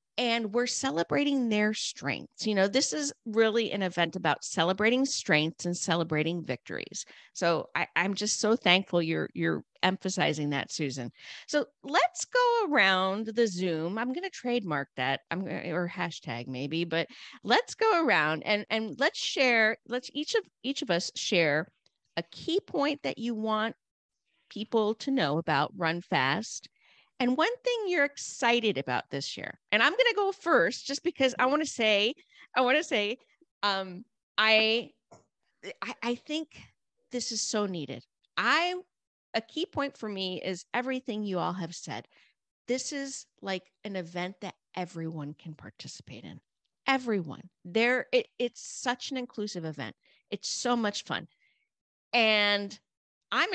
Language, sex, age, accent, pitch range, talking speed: English, female, 50-69, American, 175-260 Hz, 155 wpm